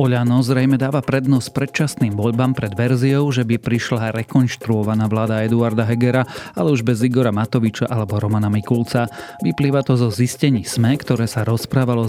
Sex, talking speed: male, 155 wpm